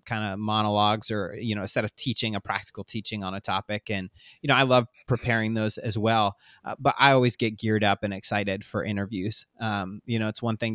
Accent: American